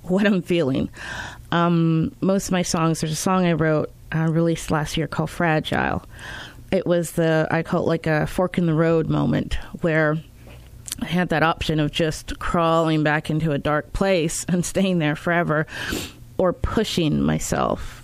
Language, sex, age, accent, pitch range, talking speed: English, female, 30-49, American, 150-180 Hz, 175 wpm